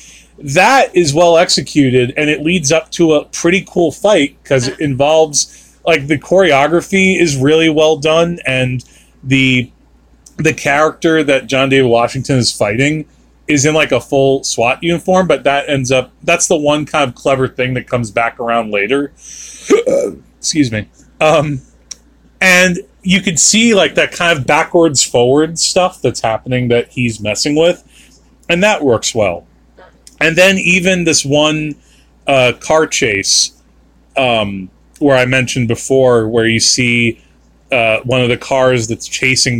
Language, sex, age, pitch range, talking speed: English, male, 30-49, 120-160 Hz, 155 wpm